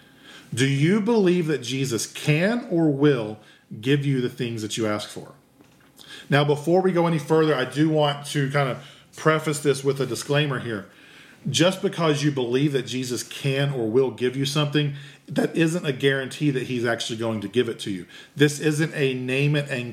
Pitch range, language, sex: 120-150 Hz, English, male